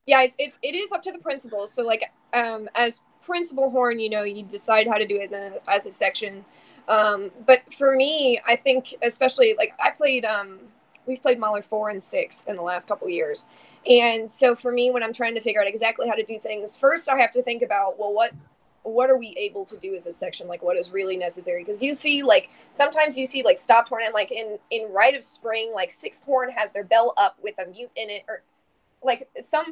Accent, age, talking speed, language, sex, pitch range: American, 20-39, 240 wpm, English, female, 200-260 Hz